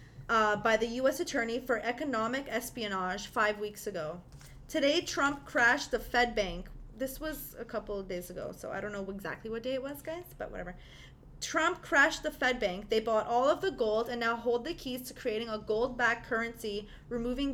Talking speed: 200 wpm